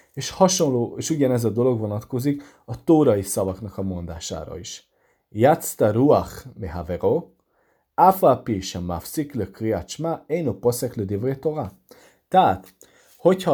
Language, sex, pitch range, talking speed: Hungarian, male, 95-135 Hz, 85 wpm